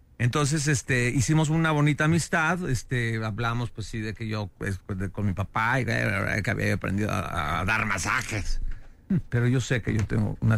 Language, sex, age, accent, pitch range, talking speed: Spanish, male, 50-69, Mexican, 105-125 Hz, 170 wpm